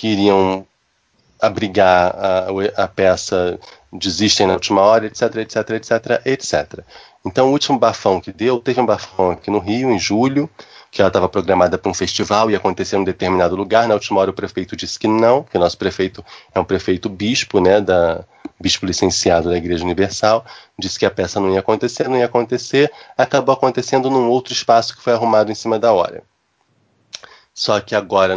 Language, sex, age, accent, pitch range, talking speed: Portuguese, male, 20-39, Brazilian, 95-125 Hz, 190 wpm